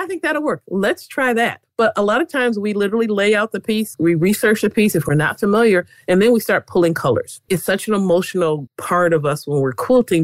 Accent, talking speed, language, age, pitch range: American, 245 wpm, English, 40-59, 150-190 Hz